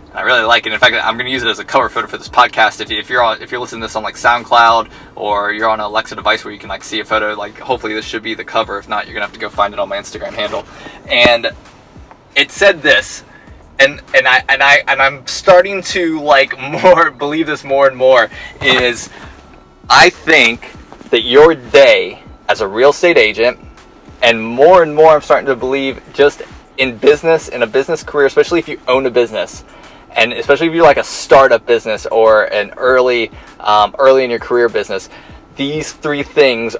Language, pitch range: English, 115-160 Hz